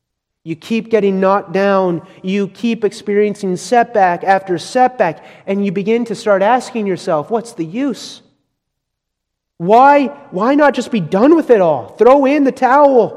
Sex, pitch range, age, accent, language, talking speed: male, 200-270 Hz, 30-49, American, English, 155 wpm